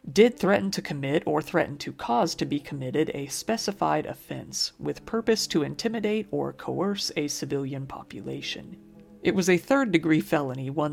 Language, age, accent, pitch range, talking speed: English, 40-59, American, 145-195 Hz, 165 wpm